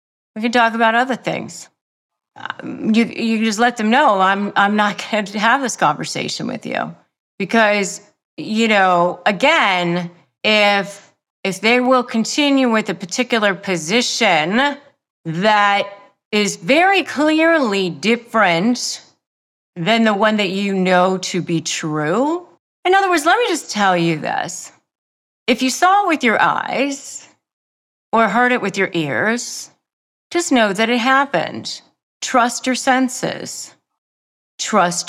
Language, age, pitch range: English, 40-59, 180-245 Hz